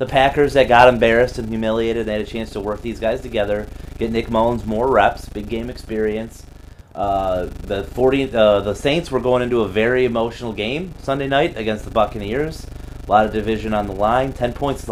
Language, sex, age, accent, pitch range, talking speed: English, male, 30-49, American, 100-135 Hz, 210 wpm